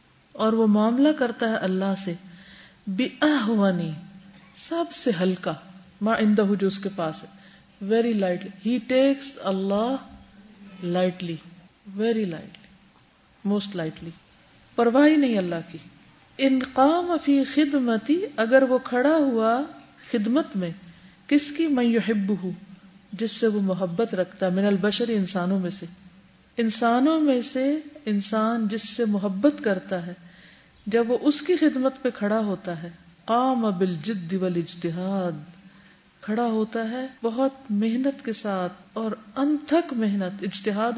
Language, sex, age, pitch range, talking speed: Urdu, female, 40-59, 190-260 Hz, 125 wpm